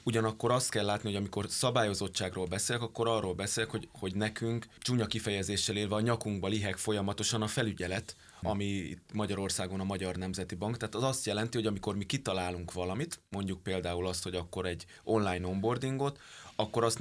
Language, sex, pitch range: Hungarian, male, 95-115 Hz